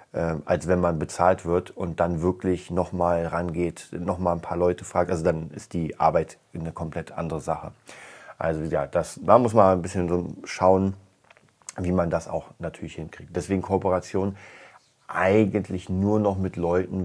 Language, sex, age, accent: German, male, 30-49, German